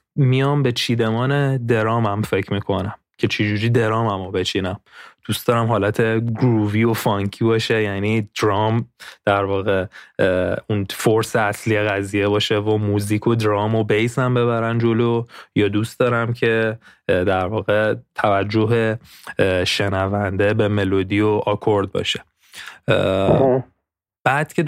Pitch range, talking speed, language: 100-115 Hz, 130 wpm, Persian